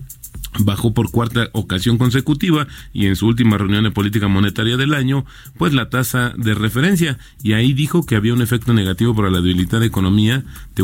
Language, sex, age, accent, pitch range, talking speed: Spanish, male, 40-59, Mexican, 100-130 Hz, 190 wpm